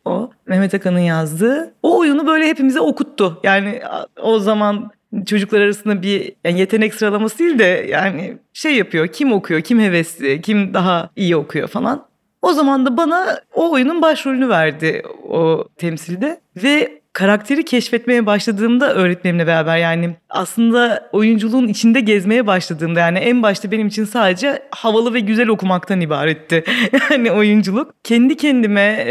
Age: 40-59